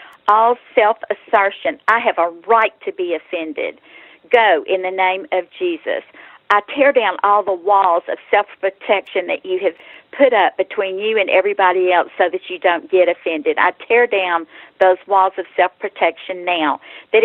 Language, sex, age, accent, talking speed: English, female, 50-69, American, 165 wpm